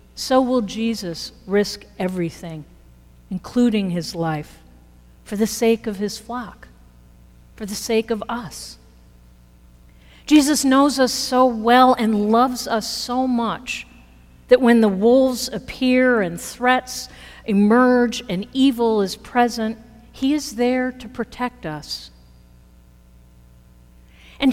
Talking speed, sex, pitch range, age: 115 wpm, female, 155-245 Hz, 50-69